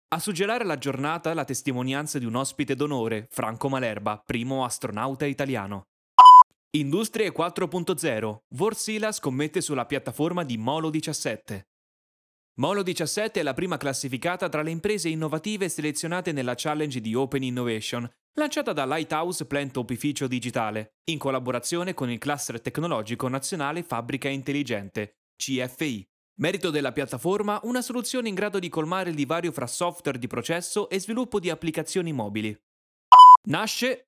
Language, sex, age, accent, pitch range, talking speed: Italian, male, 20-39, native, 130-185 Hz, 135 wpm